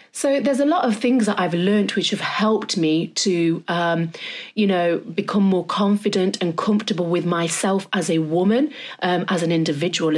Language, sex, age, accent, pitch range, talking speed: English, female, 30-49, British, 175-225 Hz, 185 wpm